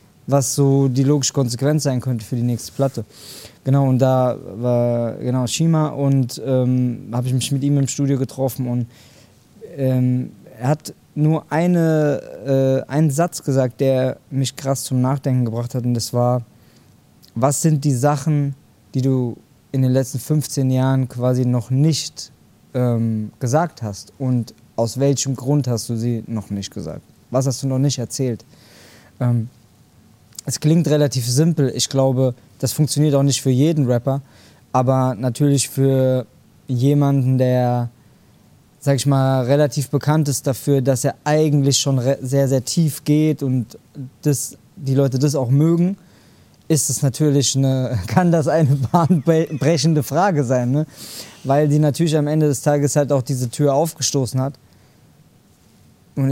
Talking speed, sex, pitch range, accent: 155 wpm, male, 125-145 Hz, German